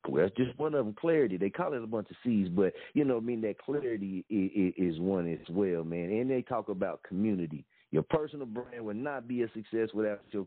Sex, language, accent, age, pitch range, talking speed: male, English, American, 50-69, 110-155 Hz, 240 wpm